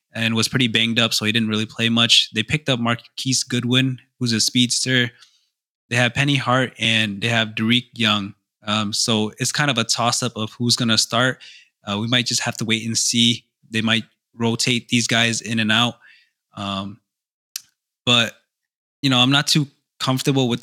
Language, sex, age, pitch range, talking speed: English, male, 20-39, 110-130 Hz, 190 wpm